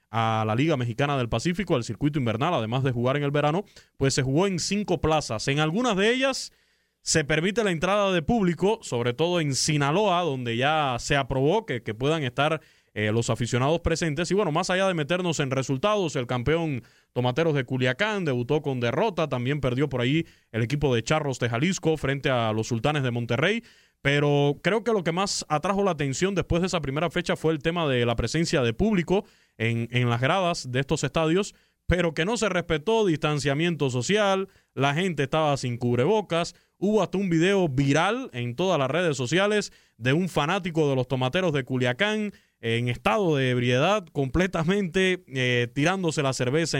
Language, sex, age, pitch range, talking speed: Spanish, male, 20-39, 130-190 Hz, 190 wpm